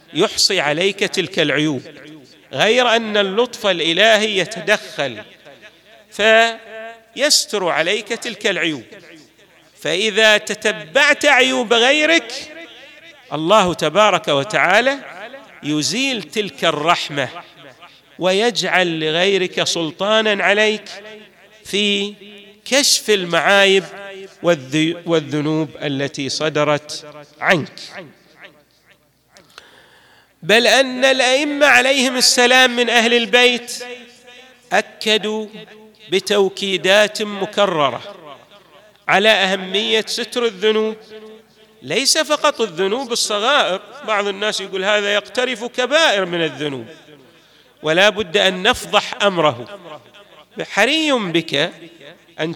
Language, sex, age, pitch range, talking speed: Arabic, male, 40-59, 175-230 Hz, 80 wpm